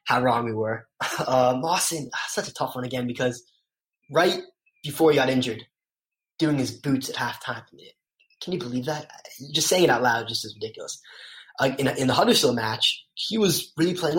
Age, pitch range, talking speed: 10-29, 120-145 Hz, 185 wpm